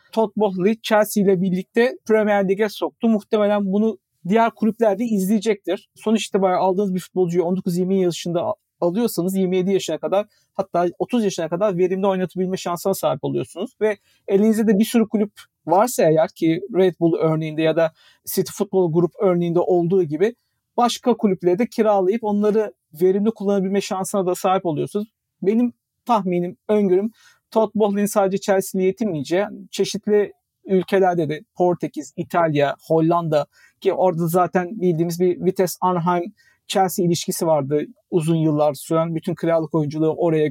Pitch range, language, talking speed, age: 175-220 Hz, Turkish, 140 wpm, 50-69